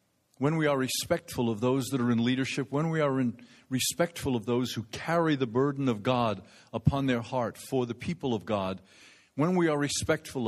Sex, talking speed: male, 195 wpm